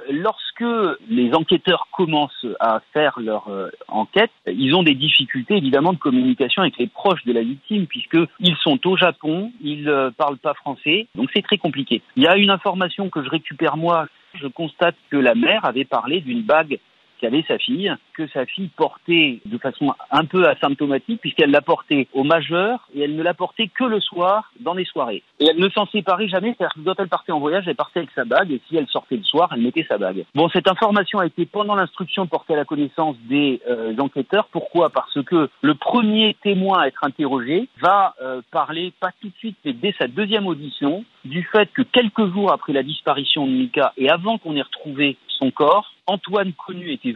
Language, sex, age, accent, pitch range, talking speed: French, male, 40-59, French, 145-205 Hz, 210 wpm